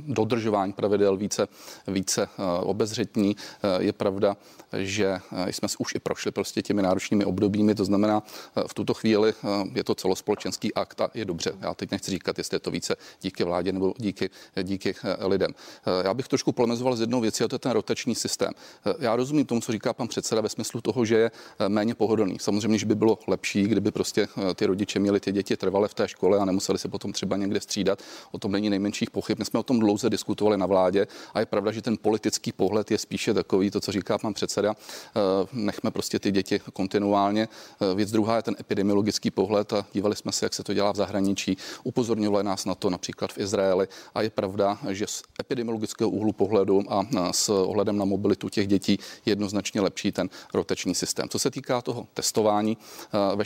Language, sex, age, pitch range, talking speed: Czech, male, 40-59, 100-110 Hz, 195 wpm